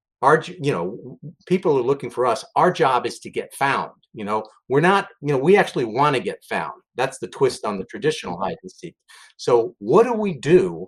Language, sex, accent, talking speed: English, male, American, 210 wpm